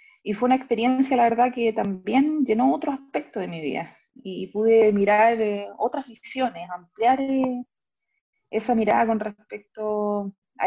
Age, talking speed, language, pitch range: 30-49, 140 wpm, Spanish, 190-230 Hz